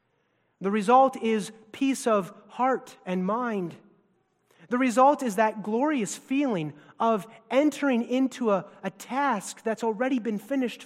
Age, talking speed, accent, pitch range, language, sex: 30-49, 135 wpm, American, 165-235 Hz, English, male